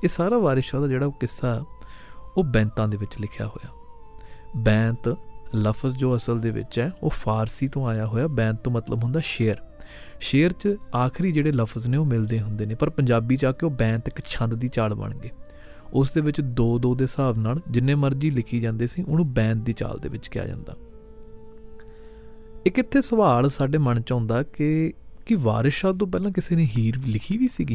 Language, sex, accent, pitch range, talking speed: English, male, Indian, 110-140 Hz, 115 wpm